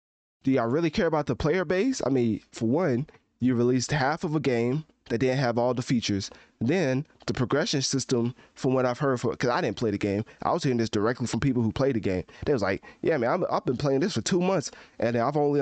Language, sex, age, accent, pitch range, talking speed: English, male, 20-39, American, 115-145 Hz, 250 wpm